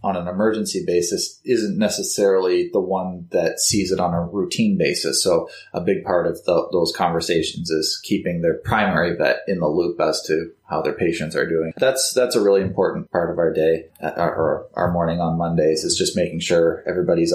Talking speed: 195 wpm